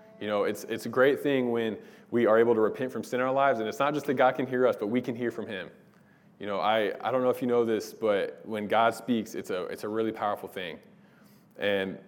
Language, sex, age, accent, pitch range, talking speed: English, male, 20-39, American, 110-135 Hz, 275 wpm